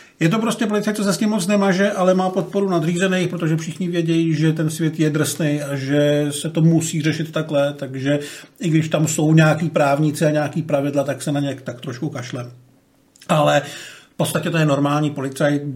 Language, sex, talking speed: Czech, male, 200 wpm